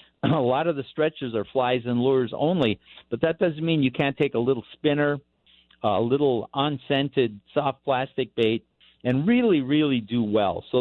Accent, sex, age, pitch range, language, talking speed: American, male, 50-69, 115-145 Hz, English, 180 wpm